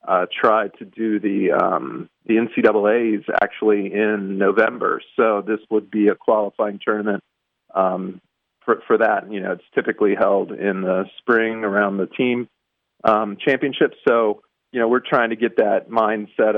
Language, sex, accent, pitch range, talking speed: English, male, American, 105-120 Hz, 160 wpm